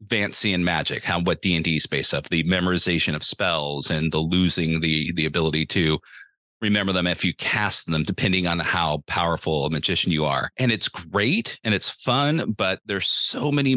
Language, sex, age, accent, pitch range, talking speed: English, male, 30-49, American, 85-110 Hz, 190 wpm